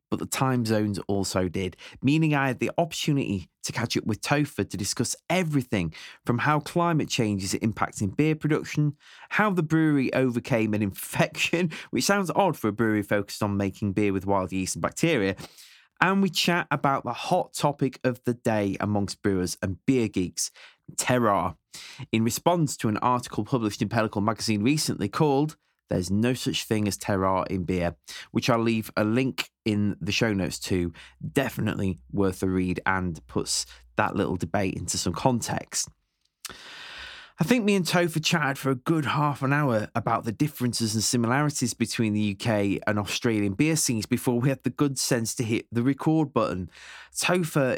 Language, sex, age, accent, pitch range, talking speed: English, male, 20-39, British, 100-140 Hz, 175 wpm